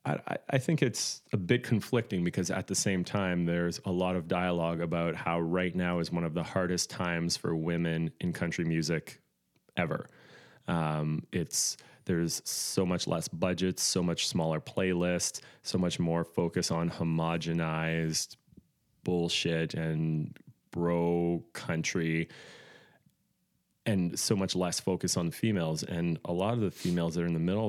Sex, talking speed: male, 160 wpm